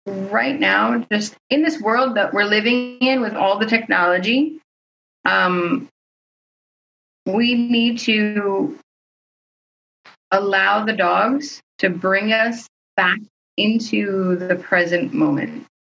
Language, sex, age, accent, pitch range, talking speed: English, female, 20-39, American, 175-230 Hz, 110 wpm